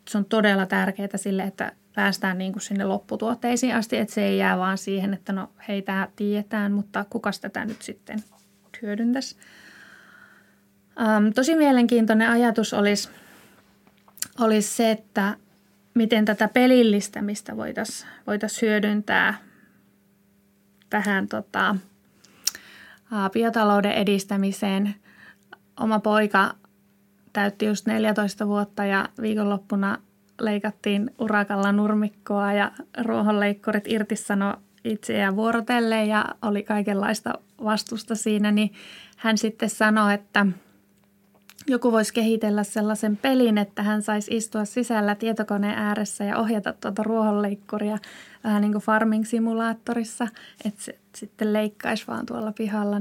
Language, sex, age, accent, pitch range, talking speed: Finnish, female, 20-39, native, 205-220 Hz, 110 wpm